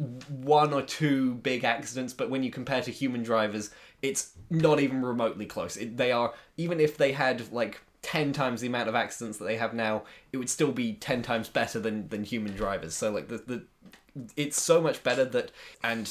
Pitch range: 110-135 Hz